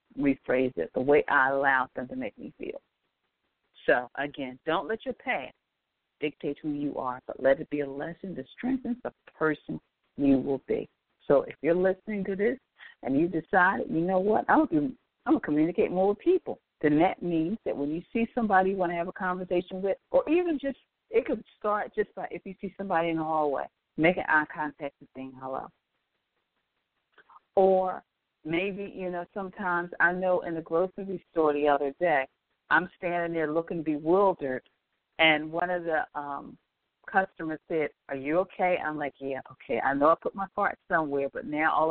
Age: 50-69